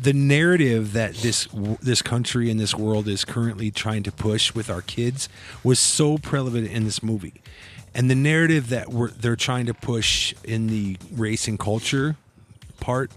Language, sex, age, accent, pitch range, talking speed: English, male, 40-59, American, 110-135 Hz, 175 wpm